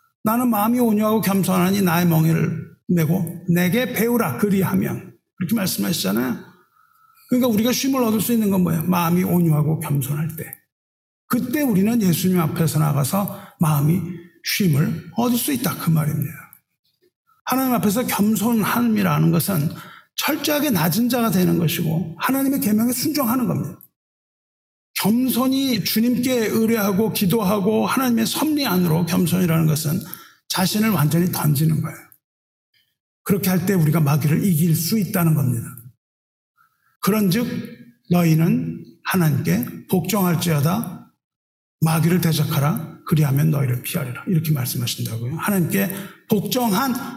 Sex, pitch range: male, 160-230 Hz